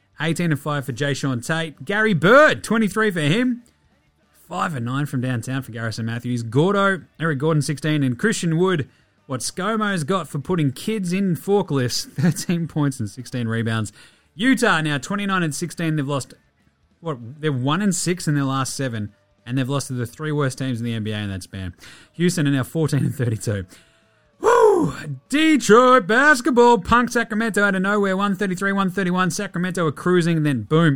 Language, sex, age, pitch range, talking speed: English, male, 30-49, 130-180 Hz, 170 wpm